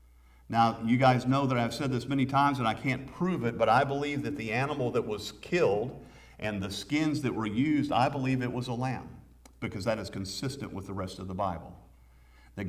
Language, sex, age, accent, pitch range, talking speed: English, male, 50-69, American, 95-130 Hz, 220 wpm